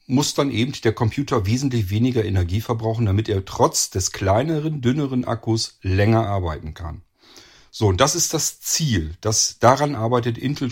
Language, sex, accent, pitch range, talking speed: German, male, German, 95-120 Hz, 155 wpm